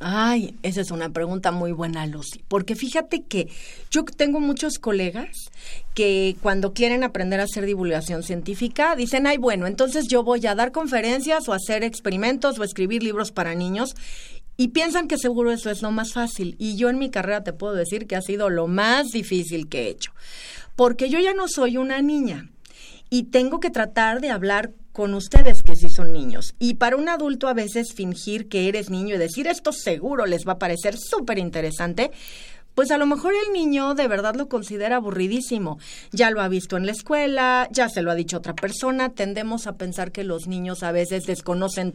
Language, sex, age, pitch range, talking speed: Spanish, female, 40-59, 190-255 Hz, 200 wpm